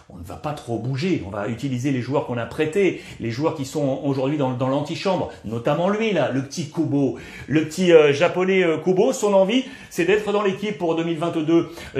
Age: 40-59